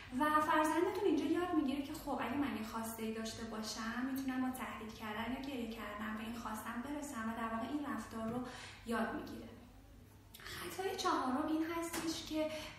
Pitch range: 225-280 Hz